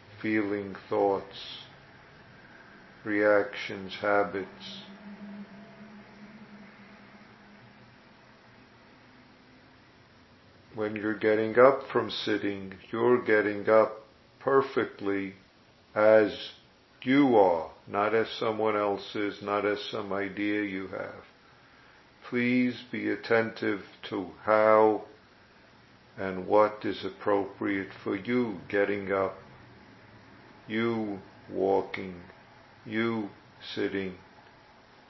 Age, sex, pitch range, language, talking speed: 50-69, male, 100-115 Hz, English, 75 wpm